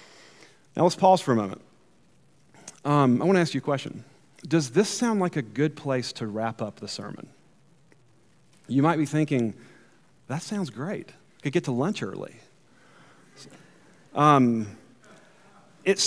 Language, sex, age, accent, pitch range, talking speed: English, male, 40-59, American, 140-195 Hz, 155 wpm